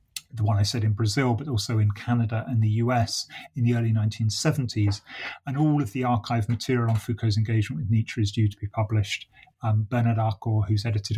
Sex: male